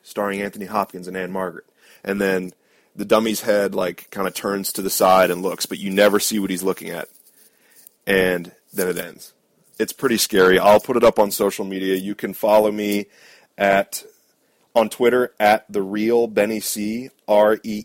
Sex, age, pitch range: male, 30-49, 100-115 Hz